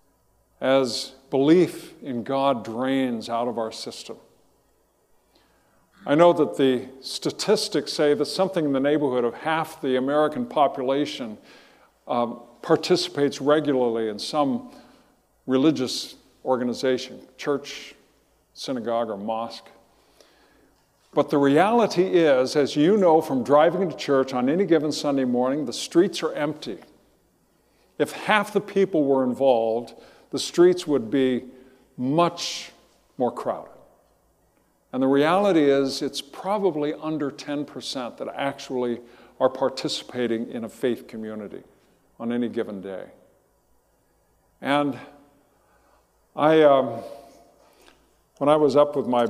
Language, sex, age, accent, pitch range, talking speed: English, male, 50-69, American, 120-150 Hz, 120 wpm